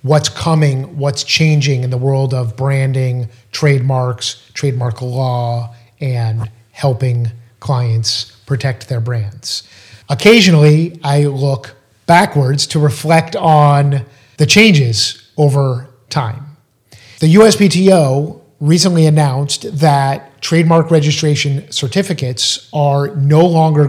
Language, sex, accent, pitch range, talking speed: English, male, American, 130-160 Hz, 100 wpm